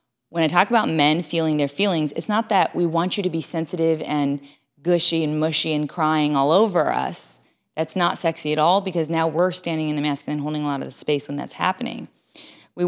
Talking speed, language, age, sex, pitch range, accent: 225 wpm, English, 20-39, female, 150-180 Hz, American